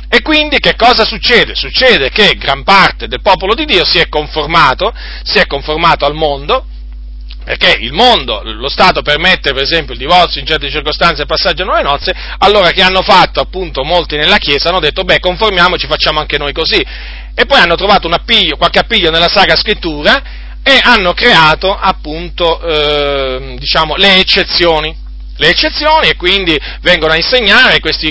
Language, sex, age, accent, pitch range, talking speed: Italian, male, 40-59, native, 150-195 Hz, 175 wpm